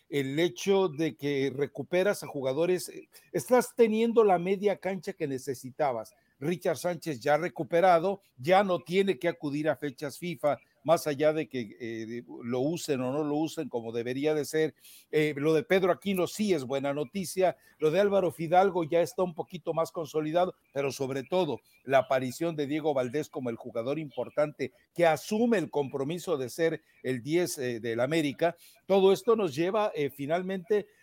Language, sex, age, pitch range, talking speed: Spanish, male, 60-79, 140-195 Hz, 175 wpm